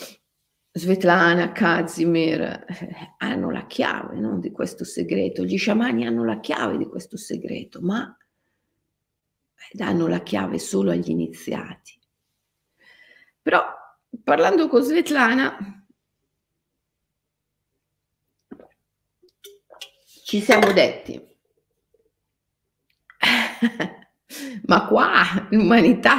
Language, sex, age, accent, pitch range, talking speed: Italian, female, 50-69, native, 180-270 Hz, 80 wpm